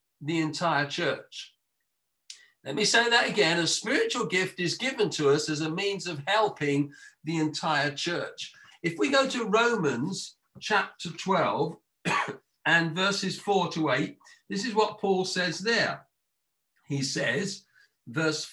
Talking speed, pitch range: 145 wpm, 165-230 Hz